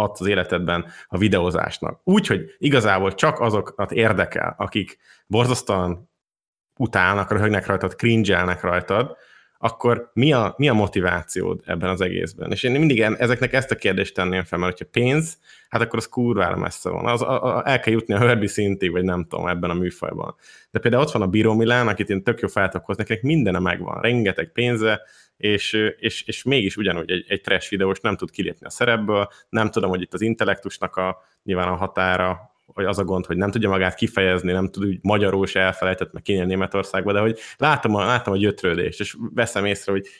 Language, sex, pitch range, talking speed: Hungarian, male, 95-115 Hz, 185 wpm